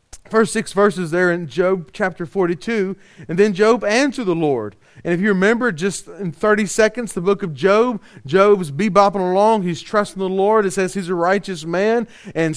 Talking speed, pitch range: 190 wpm, 175-215 Hz